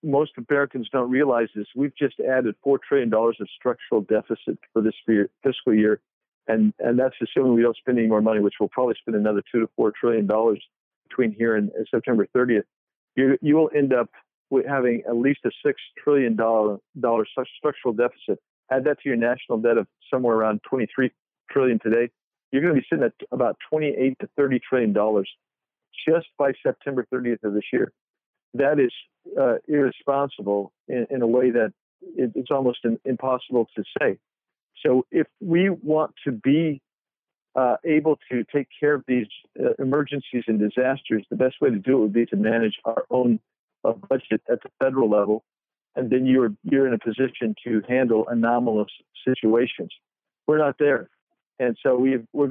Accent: American